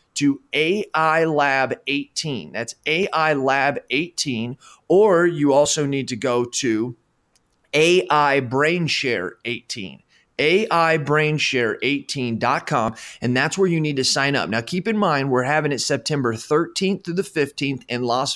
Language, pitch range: English, 115-150 Hz